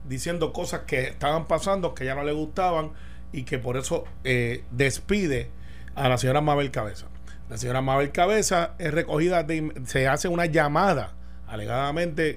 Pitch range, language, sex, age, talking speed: 130-170 Hz, Spanish, male, 30-49, 160 wpm